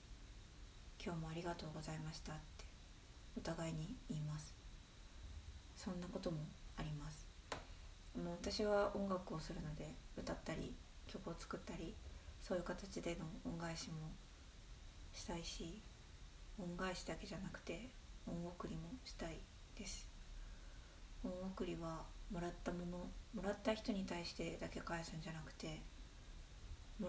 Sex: female